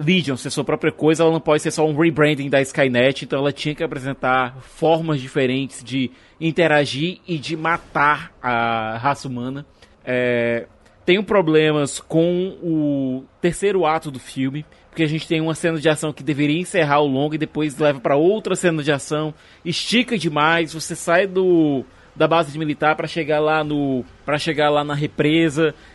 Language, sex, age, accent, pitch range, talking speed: Portuguese, male, 20-39, Brazilian, 140-165 Hz, 170 wpm